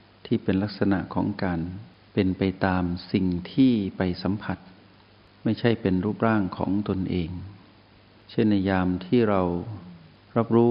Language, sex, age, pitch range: Thai, male, 60-79, 95-110 Hz